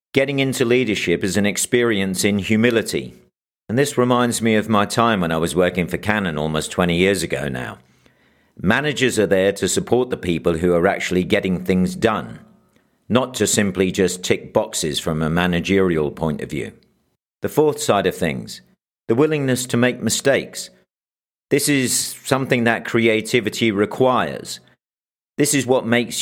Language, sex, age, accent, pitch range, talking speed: English, male, 50-69, British, 90-125 Hz, 160 wpm